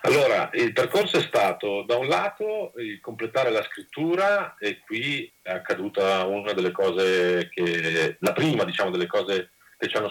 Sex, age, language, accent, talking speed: male, 40-59, Italian, native, 165 wpm